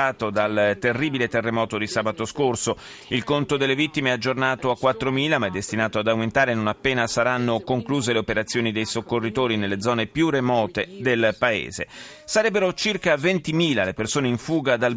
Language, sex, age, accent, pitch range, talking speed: Italian, male, 30-49, native, 110-135 Hz, 150 wpm